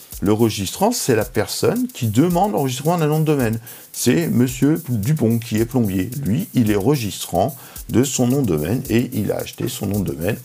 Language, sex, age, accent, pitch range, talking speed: French, male, 50-69, French, 100-140 Hz, 200 wpm